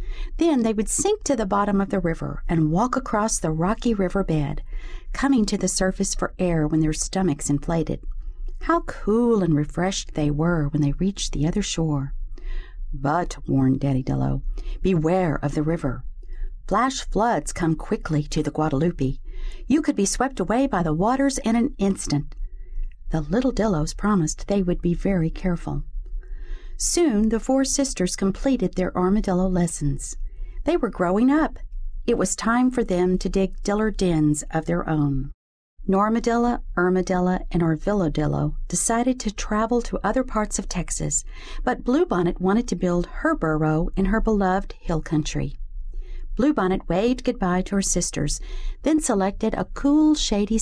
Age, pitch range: 50-69, 155-220 Hz